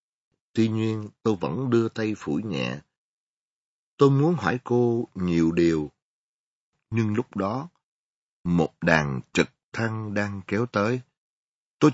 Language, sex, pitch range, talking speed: Vietnamese, male, 85-130 Hz, 125 wpm